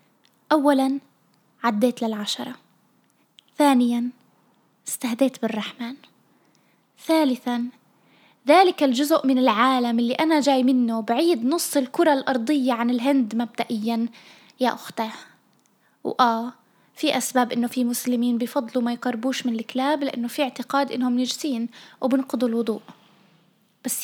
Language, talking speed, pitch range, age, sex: Arabic, 105 wpm, 240-285 Hz, 20-39, female